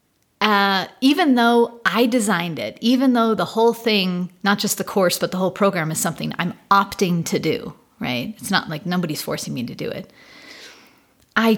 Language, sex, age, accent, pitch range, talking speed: English, female, 40-59, American, 170-210 Hz, 185 wpm